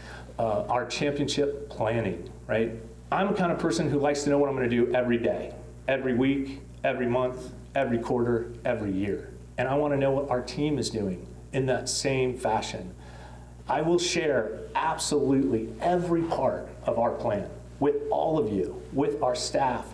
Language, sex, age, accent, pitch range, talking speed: English, male, 40-59, American, 95-135 Hz, 180 wpm